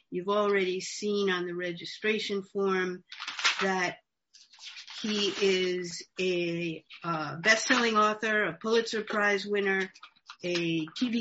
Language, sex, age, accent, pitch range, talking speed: English, female, 50-69, American, 185-215 Hz, 105 wpm